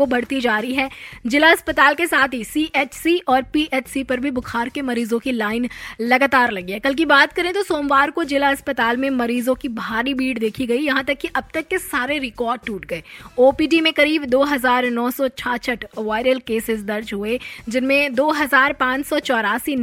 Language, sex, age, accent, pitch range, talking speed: Hindi, female, 20-39, native, 235-280 Hz, 170 wpm